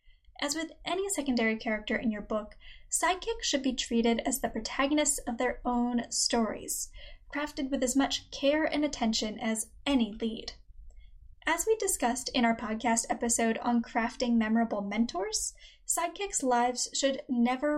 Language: English